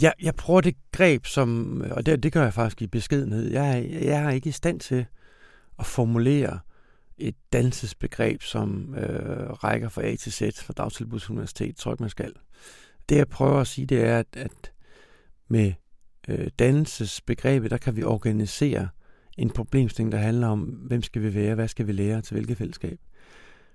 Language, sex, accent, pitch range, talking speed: Danish, male, native, 110-140 Hz, 175 wpm